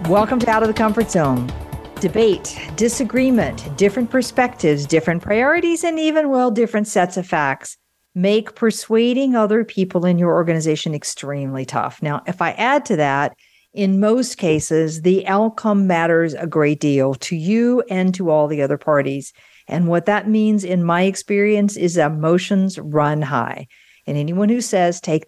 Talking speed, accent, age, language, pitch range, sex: 160 wpm, American, 50-69, English, 160-215 Hz, female